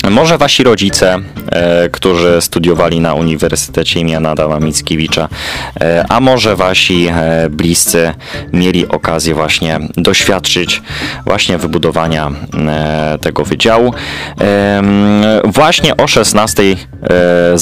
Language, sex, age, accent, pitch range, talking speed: Polish, male, 20-39, native, 80-95 Hz, 85 wpm